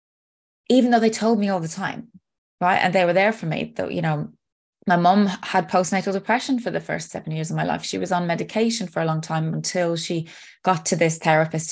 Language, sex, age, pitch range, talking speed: English, female, 20-39, 165-210 Hz, 230 wpm